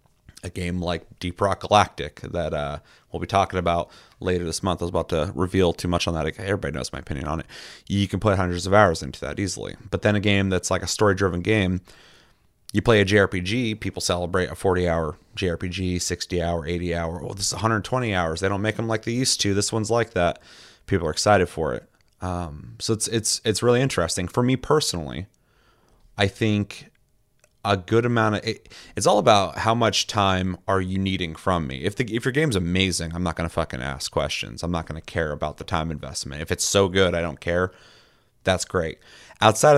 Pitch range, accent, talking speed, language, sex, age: 85-110 Hz, American, 215 wpm, English, male, 30-49